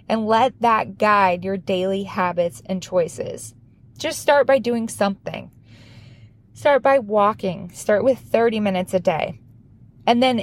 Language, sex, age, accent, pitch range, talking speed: English, female, 20-39, American, 180-235 Hz, 145 wpm